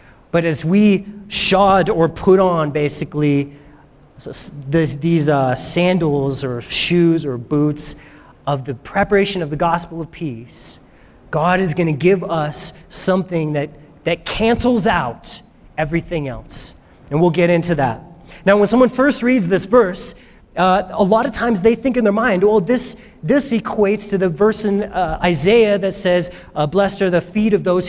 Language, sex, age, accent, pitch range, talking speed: English, male, 30-49, American, 165-215 Hz, 170 wpm